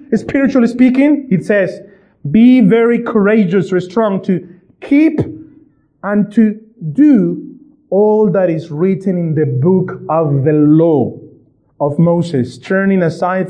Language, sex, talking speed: English, male, 125 wpm